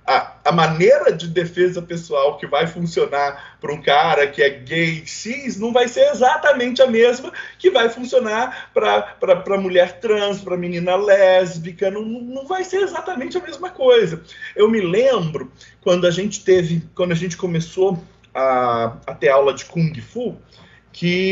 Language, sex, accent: Portuguese, male, Brazilian